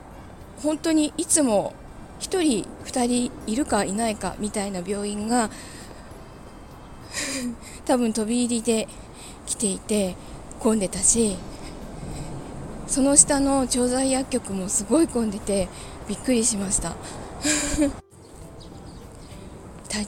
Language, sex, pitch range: Japanese, female, 200-265 Hz